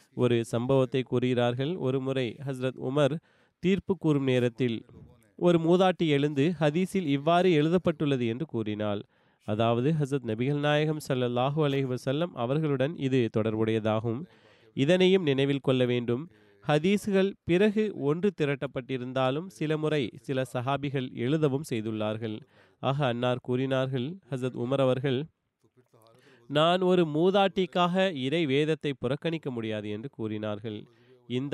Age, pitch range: 30-49, 125-160 Hz